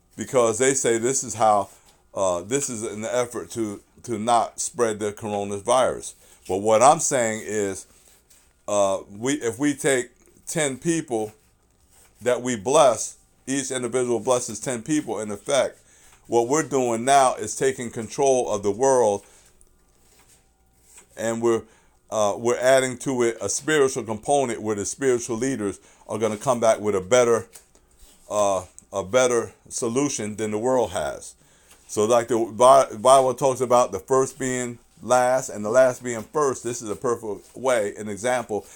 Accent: American